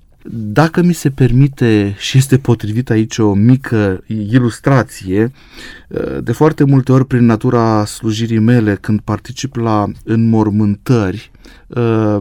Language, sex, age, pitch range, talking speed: Romanian, male, 30-49, 105-130 Hz, 115 wpm